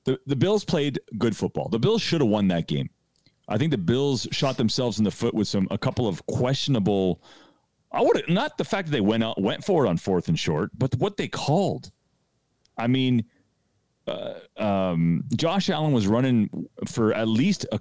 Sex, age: male, 40-59